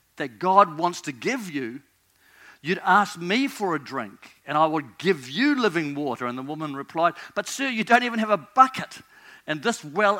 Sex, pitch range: male, 145-215 Hz